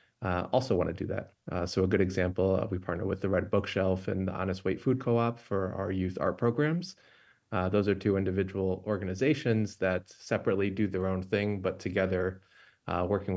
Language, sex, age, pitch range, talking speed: English, male, 30-49, 95-105 Hz, 200 wpm